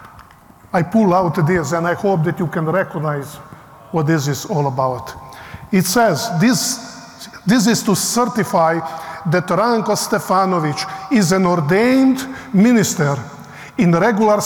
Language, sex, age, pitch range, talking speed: English, male, 50-69, 165-215 Hz, 135 wpm